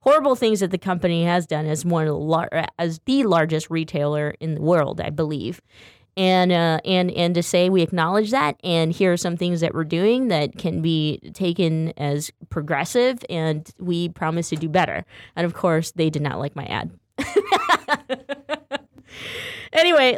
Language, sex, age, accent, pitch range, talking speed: English, female, 20-39, American, 155-190 Hz, 170 wpm